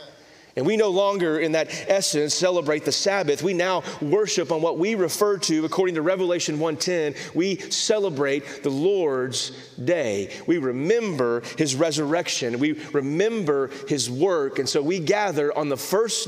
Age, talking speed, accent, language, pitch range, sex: 30-49, 155 wpm, American, English, 130-180 Hz, male